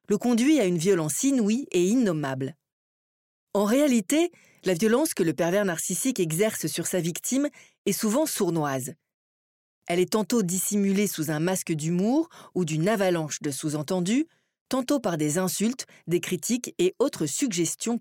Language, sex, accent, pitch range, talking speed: French, female, French, 160-230 Hz, 150 wpm